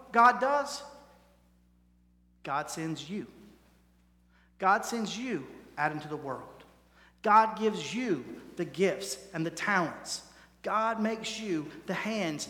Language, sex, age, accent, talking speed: English, male, 40-59, American, 120 wpm